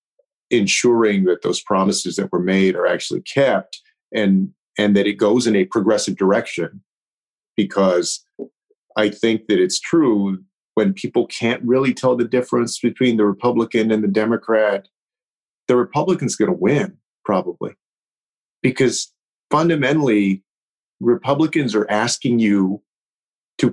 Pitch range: 110-160 Hz